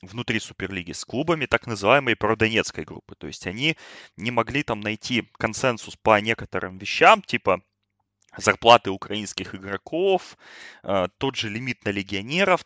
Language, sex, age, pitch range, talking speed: Russian, male, 20-39, 100-125 Hz, 135 wpm